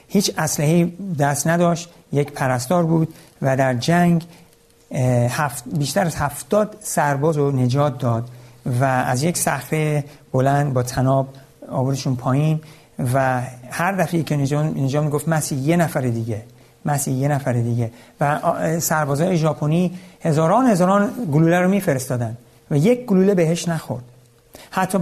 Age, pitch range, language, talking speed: 50-69, 130-170 Hz, Persian, 130 wpm